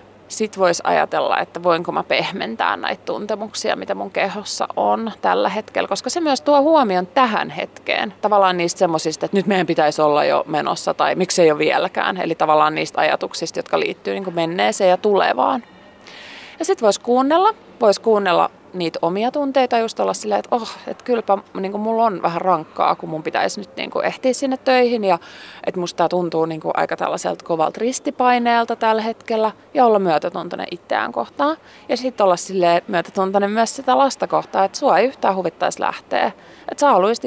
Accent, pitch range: native, 170-245 Hz